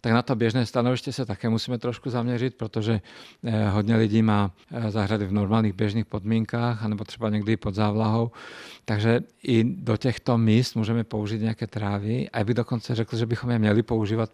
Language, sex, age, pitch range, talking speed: Czech, male, 50-69, 105-115 Hz, 175 wpm